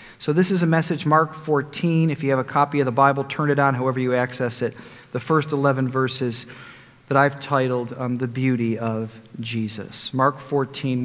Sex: male